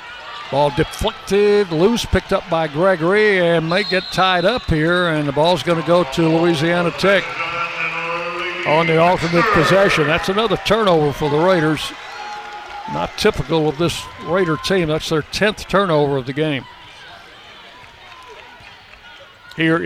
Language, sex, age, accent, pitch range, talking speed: English, male, 60-79, American, 145-175 Hz, 140 wpm